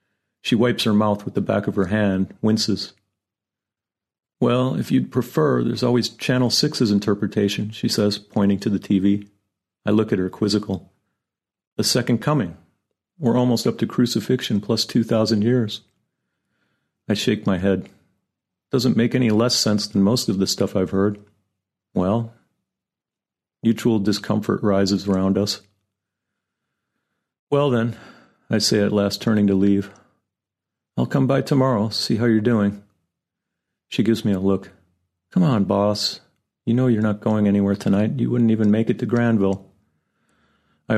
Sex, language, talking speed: male, English, 155 wpm